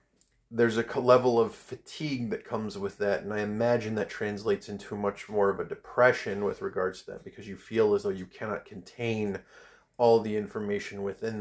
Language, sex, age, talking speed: English, male, 30-49, 190 wpm